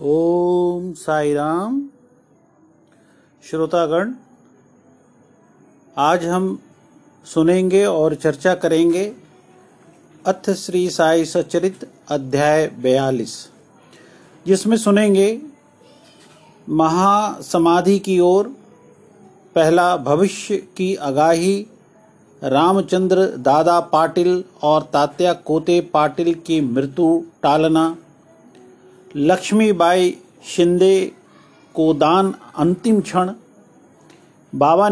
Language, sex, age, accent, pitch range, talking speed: Hindi, male, 40-59, native, 160-200 Hz, 70 wpm